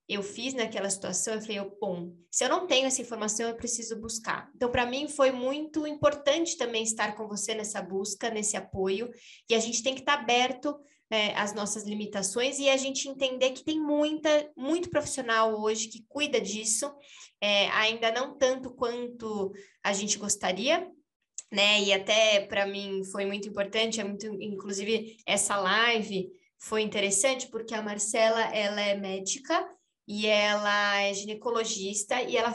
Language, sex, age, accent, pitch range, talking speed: Portuguese, female, 20-39, Brazilian, 205-265 Hz, 155 wpm